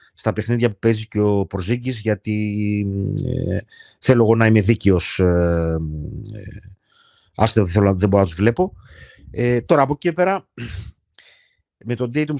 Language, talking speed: Greek, 145 wpm